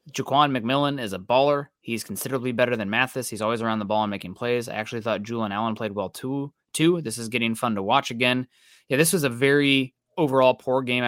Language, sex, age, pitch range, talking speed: English, male, 20-39, 110-125 Hz, 225 wpm